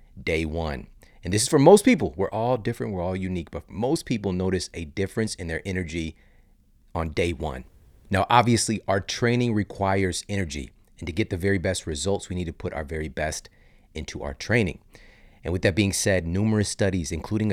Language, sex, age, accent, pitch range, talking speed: English, male, 30-49, American, 85-110 Hz, 195 wpm